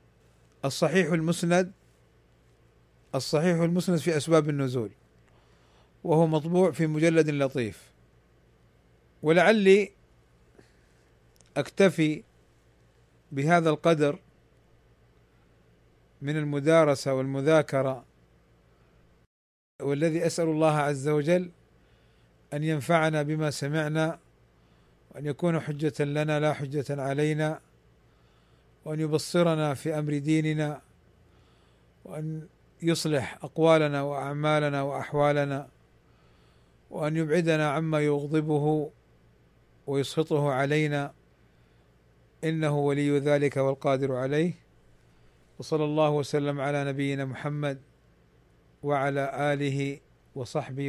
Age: 40-59